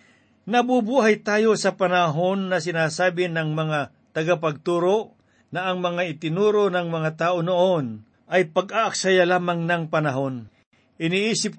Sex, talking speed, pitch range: male, 120 wpm, 160-195 Hz